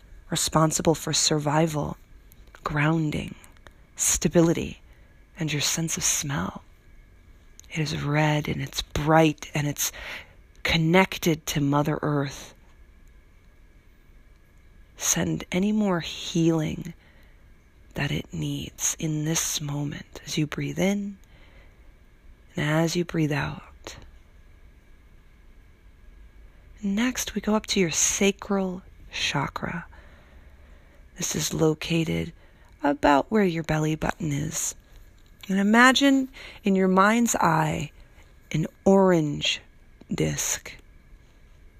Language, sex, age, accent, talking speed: English, female, 40-59, American, 95 wpm